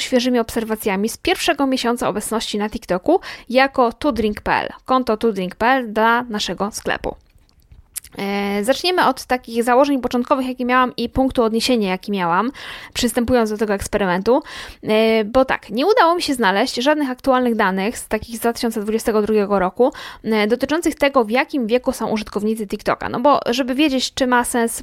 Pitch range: 210-255 Hz